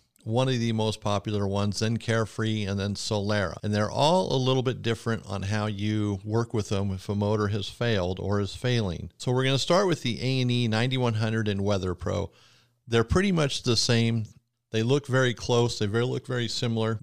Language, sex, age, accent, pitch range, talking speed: English, male, 50-69, American, 105-125 Hz, 210 wpm